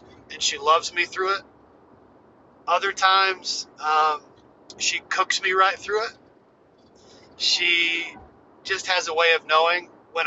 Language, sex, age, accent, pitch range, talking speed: English, male, 40-59, American, 165-225 Hz, 135 wpm